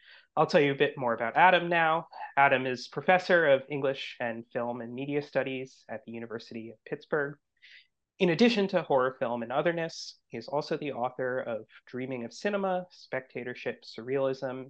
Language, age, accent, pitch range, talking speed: English, 30-49, American, 120-150 Hz, 170 wpm